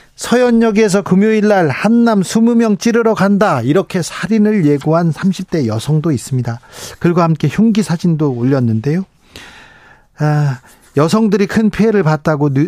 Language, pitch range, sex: Korean, 140-185 Hz, male